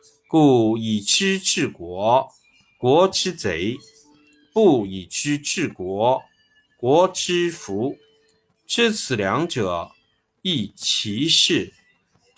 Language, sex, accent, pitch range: Chinese, male, native, 125-195 Hz